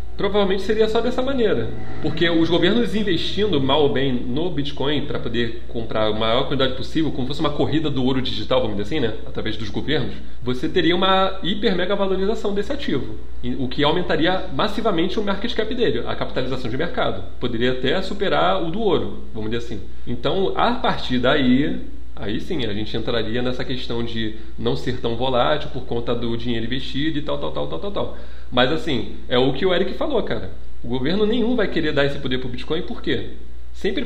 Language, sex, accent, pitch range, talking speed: Portuguese, male, Brazilian, 115-190 Hz, 205 wpm